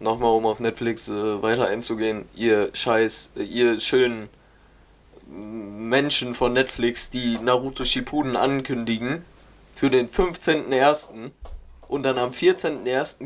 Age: 20-39